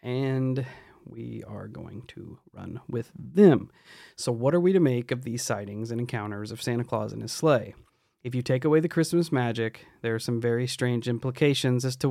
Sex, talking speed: male, 200 wpm